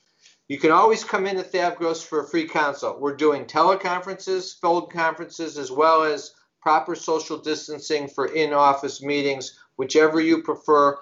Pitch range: 145-170 Hz